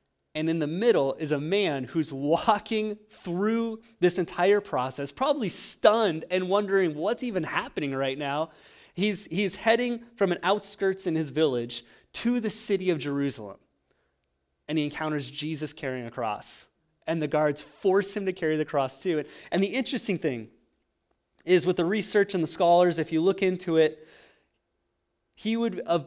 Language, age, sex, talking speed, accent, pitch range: English, 30-49, male, 165 wpm, American, 140-195 Hz